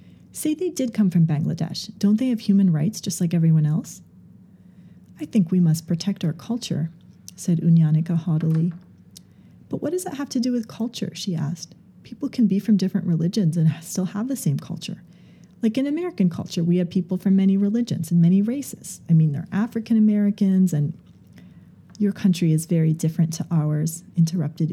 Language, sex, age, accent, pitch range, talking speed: English, female, 30-49, American, 165-205 Hz, 180 wpm